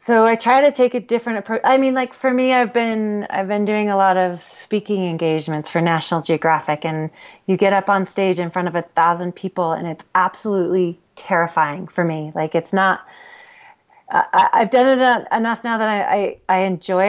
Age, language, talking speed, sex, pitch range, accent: 30-49, English, 205 wpm, female, 180-230 Hz, American